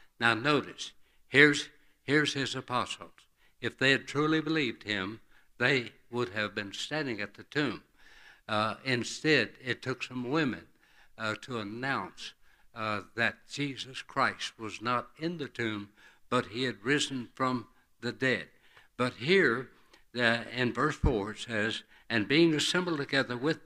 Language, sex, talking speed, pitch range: English, male, 145 wpm, 110-145 Hz